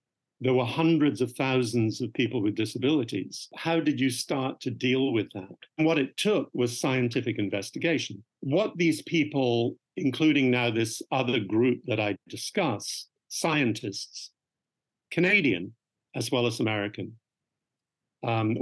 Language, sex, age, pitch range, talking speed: English, male, 50-69, 110-140 Hz, 135 wpm